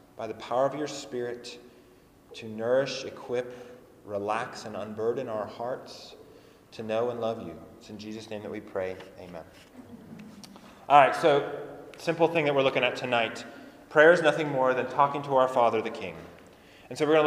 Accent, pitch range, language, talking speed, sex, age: American, 125-155 Hz, English, 180 wpm, male, 30-49